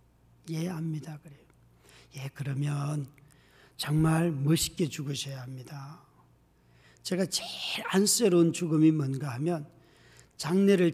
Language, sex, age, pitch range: Korean, male, 40-59, 150-190 Hz